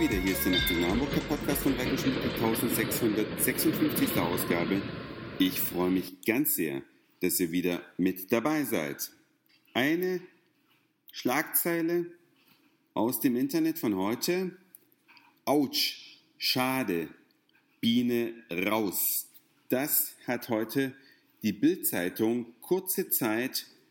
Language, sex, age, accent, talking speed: German, male, 50-69, German, 95 wpm